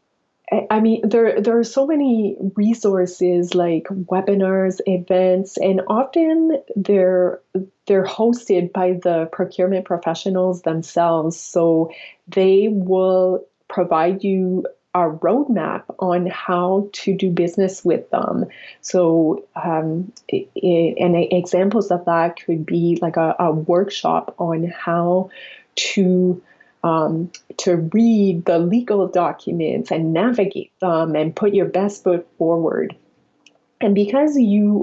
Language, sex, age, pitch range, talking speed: English, female, 30-49, 170-195 Hz, 115 wpm